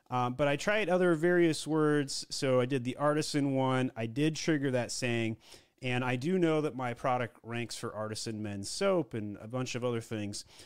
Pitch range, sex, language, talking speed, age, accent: 115-160 Hz, male, English, 205 wpm, 30-49, American